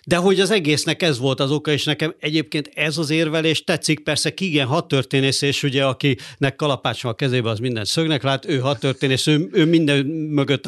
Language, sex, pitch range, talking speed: Hungarian, male, 130-165 Hz, 190 wpm